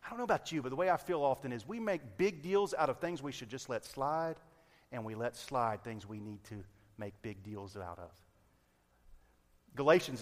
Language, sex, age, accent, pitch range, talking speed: English, male, 40-59, American, 120-175 Hz, 225 wpm